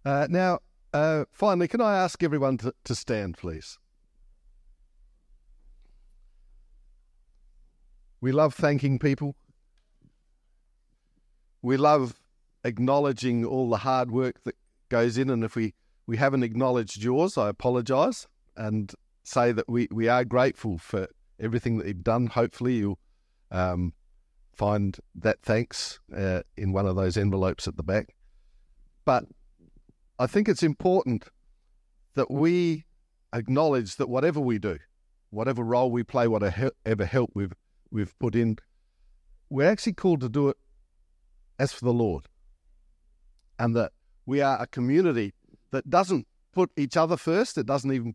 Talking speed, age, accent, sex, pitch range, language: 135 wpm, 50-69, Australian, male, 95-140 Hz, English